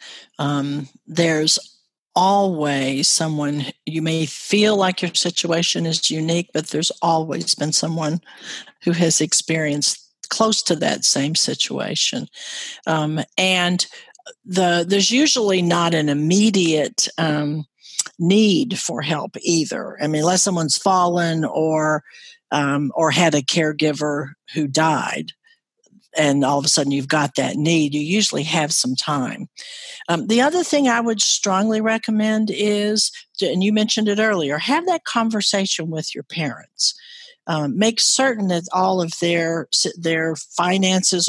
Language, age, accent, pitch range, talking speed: English, 50-69, American, 155-205 Hz, 135 wpm